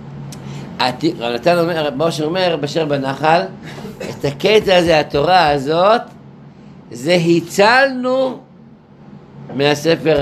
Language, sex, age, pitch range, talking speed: Hebrew, male, 60-79, 140-170 Hz, 80 wpm